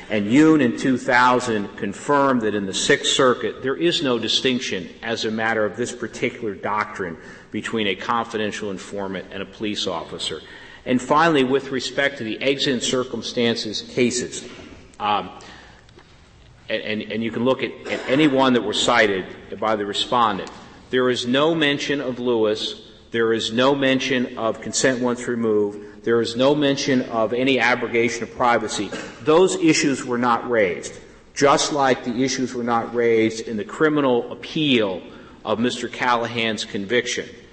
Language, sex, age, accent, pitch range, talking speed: English, male, 50-69, American, 110-130 Hz, 160 wpm